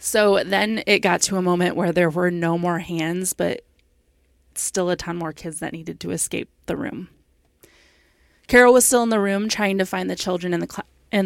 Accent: American